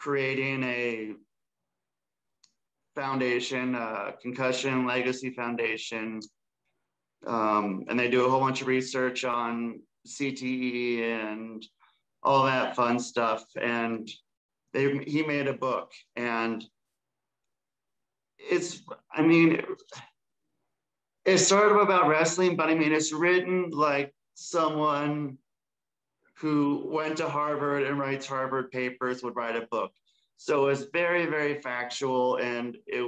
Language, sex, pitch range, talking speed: English, male, 115-140 Hz, 115 wpm